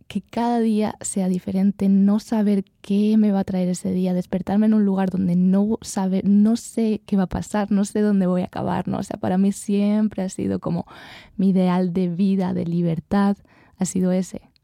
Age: 20-39